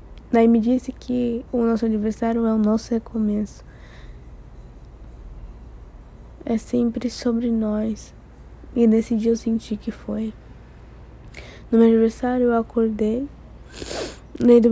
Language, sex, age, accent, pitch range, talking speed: Portuguese, female, 20-39, Brazilian, 225-250 Hz, 115 wpm